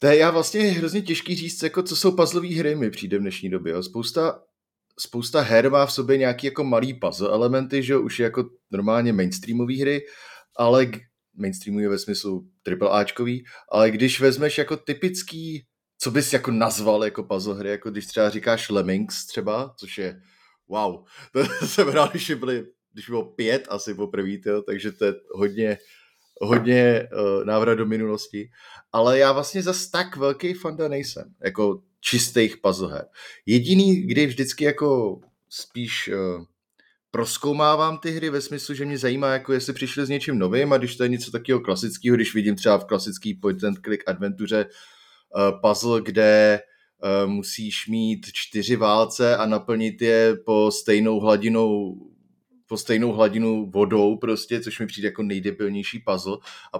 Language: Czech